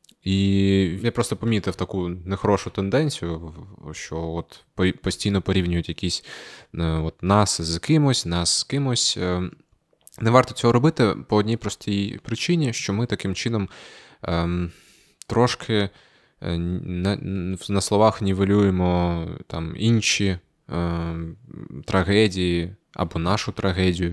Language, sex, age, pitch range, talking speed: Ukrainian, male, 20-39, 85-105 Hz, 100 wpm